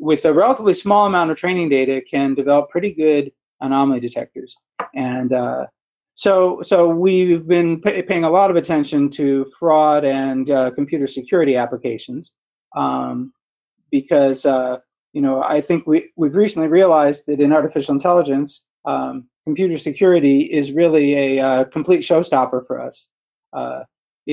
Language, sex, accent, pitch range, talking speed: English, male, American, 135-170 Hz, 150 wpm